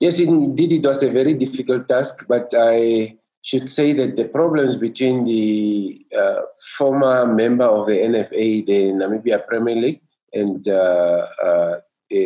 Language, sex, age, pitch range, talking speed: English, male, 50-69, 100-130 Hz, 150 wpm